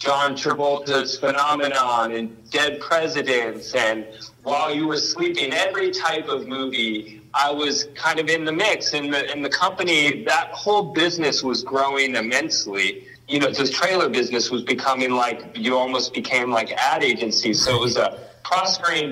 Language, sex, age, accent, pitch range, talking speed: English, male, 30-49, American, 125-150 Hz, 165 wpm